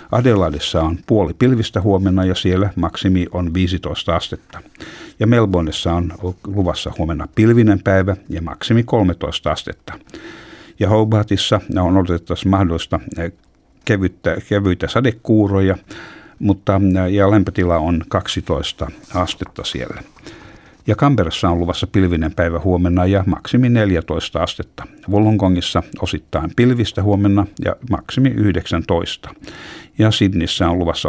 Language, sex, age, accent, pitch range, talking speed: Finnish, male, 60-79, native, 85-105 Hz, 110 wpm